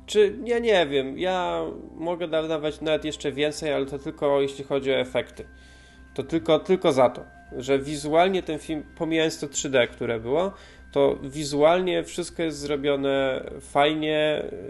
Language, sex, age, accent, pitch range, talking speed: Polish, male, 20-39, native, 120-155 Hz, 150 wpm